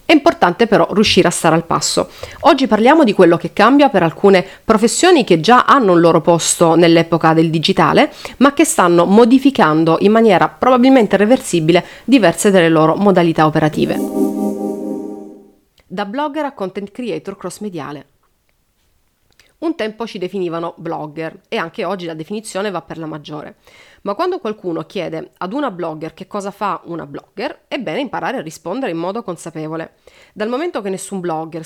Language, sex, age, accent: Italian, female, 30-49, native